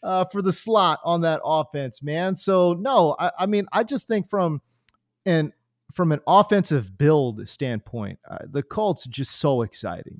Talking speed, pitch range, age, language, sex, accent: 175 wpm, 135-200 Hz, 30-49, English, male, American